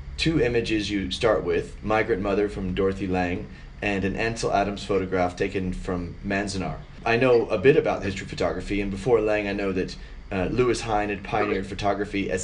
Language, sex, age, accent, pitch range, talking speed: English, male, 30-49, American, 95-105 Hz, 185 wpm